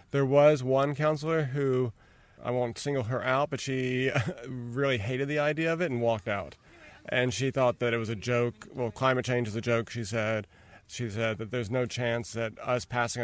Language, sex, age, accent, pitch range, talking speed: English, male, 30-49, American, 120-150 Hz, 210 wpm